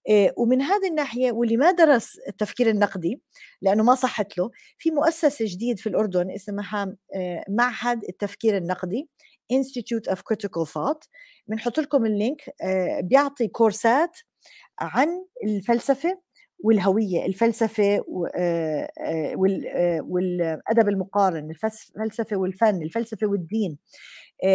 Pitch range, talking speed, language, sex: 190-255 Hz, 100 wpm, English, female